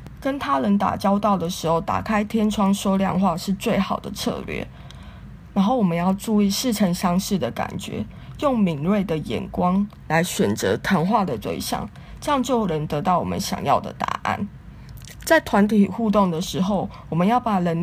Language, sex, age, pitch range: Chinese, female, 20-39, 185-215 Hz